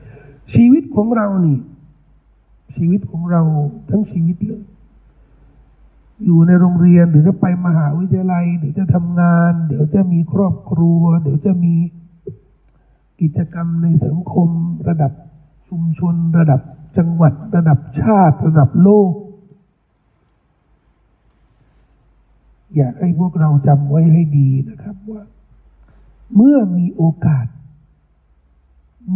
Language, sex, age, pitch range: Thai, male, 60-79, 140-185 Hz